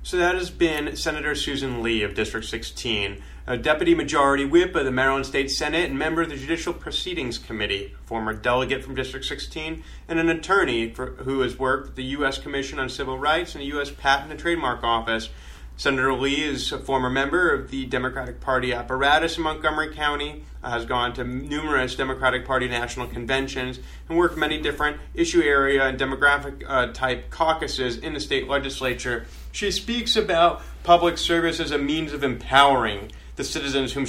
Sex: male